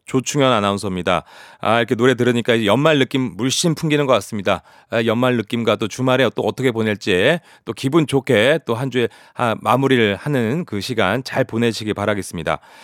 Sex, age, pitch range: male, 30-49, 105-140 Hz